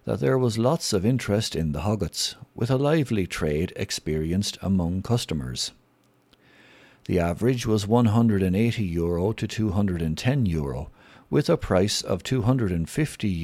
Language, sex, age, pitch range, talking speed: English, male, 60-79, 85-120 Hz, 125 wpm